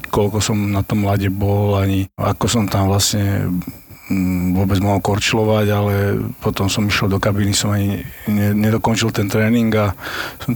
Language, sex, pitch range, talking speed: Slovak, male, 95-110 Hz, 155 wpm